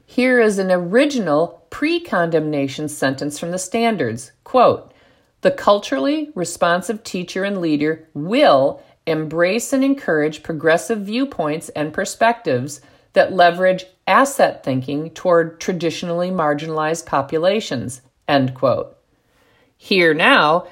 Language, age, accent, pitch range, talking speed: English, 50-69, American, 150-215 Hz, 105 wpm